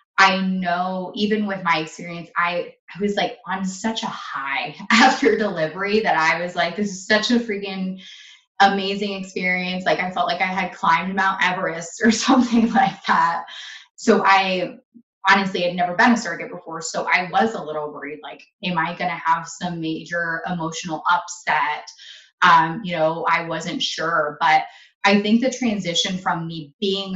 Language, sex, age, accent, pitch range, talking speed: English, female, 20-39, American, 165-195 Hz, 175 wpm